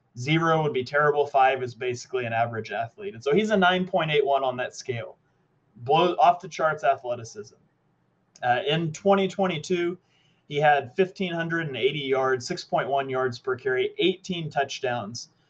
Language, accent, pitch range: English, American, 130-170 Hz